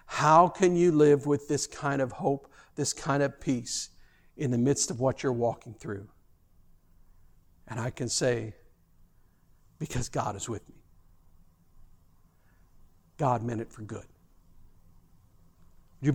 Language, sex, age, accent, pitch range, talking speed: English, male, 60-79, American, 125-180 Hz, 135 wpm